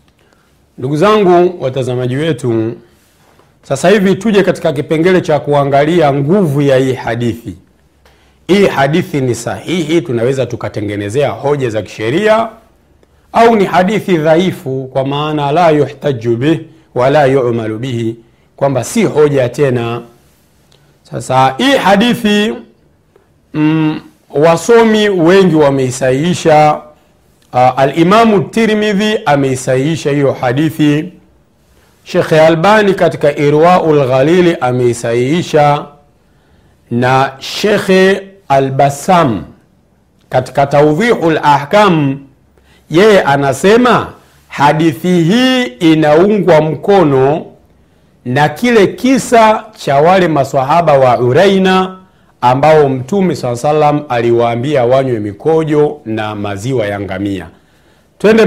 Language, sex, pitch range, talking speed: Swahili, male, 125-175 Hz, 90 wpm